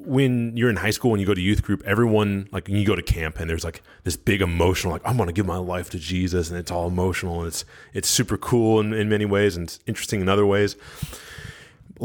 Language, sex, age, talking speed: English, male, 20-39, 265 wpm